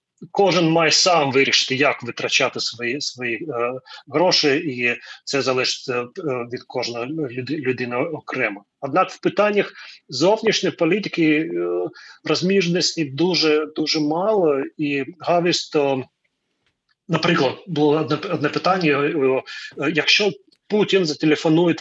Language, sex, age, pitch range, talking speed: Ukrainian, male, 30-49, 135-175 Hz, 125 wpm